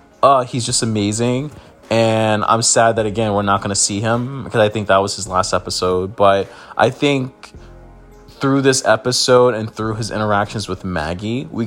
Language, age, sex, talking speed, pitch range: English, 20-39, male, 185 wpm, 100-120 Hz